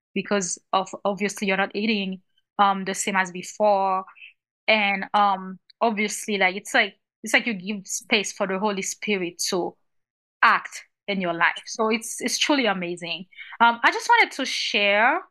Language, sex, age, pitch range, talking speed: English, female, 20-39, 195-235 Hz, 165 wpm